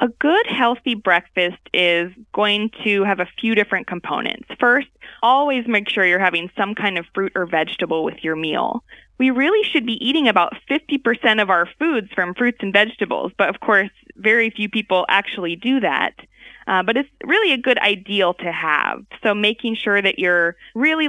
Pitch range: 190-250 Hz